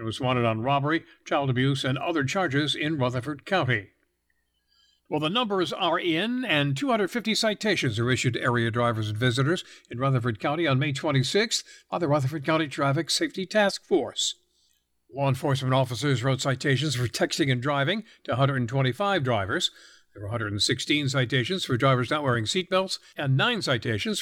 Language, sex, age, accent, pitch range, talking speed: English, male, 60-79, American, 130-175 Hz, 165 wpm